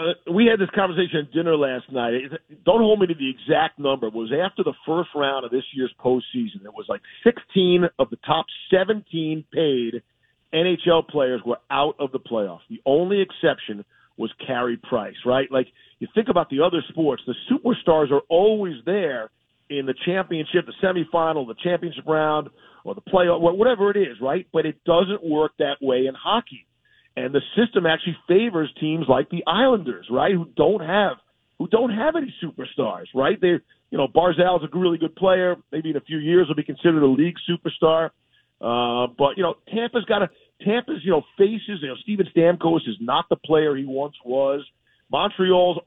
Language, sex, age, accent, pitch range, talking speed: English, male, 50-69, American, 140-185 Hz, 190 wpm